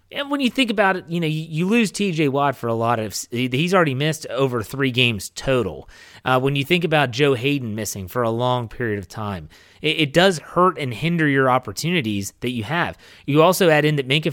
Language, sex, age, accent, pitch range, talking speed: English, male, 30-49, American, 115-155 Hz, 225 wpm